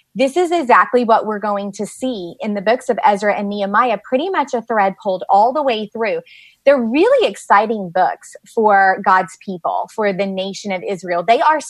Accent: American